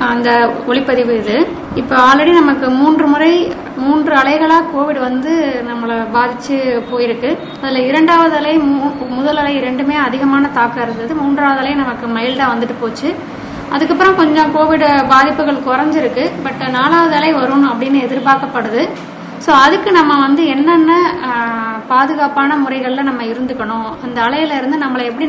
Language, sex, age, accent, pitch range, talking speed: Tamil, female, 20-39, native, 250-305 Hz, 130 wpm